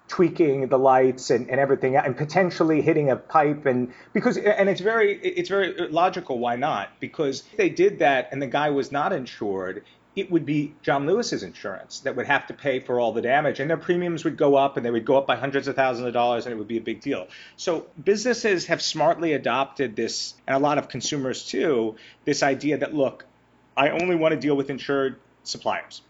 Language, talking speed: English, 220 wpm